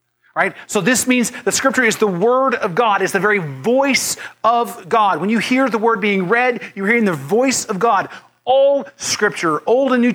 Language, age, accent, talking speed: English, 30-49, American, 205 wpm